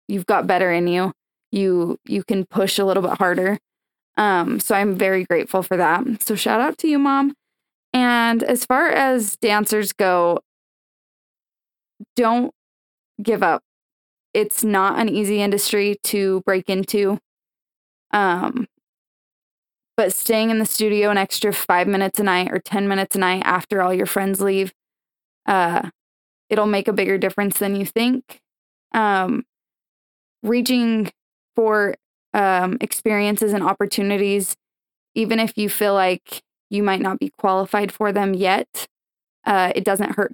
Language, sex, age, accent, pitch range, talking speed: English, female, 20-39, American, 190-220 Hz, 145 wpm